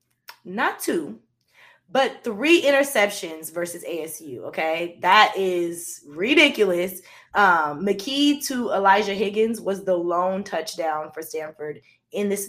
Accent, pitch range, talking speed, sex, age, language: American, 175-220 Hz, 115 wpm, female, 20-39, English